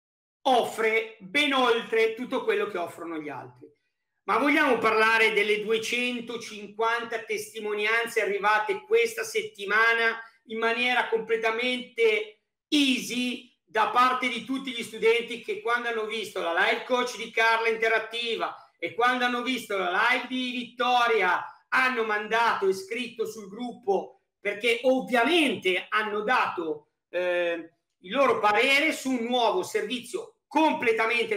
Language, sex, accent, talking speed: Italian, male, native, 125 wpm